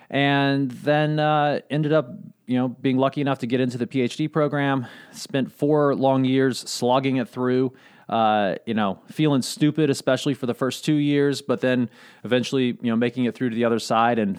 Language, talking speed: English, 195 wpm